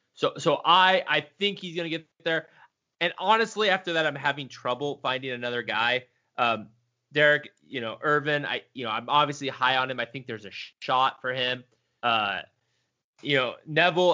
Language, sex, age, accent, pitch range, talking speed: English, male, 20-39, American, 120-150 Hz, 180 wpm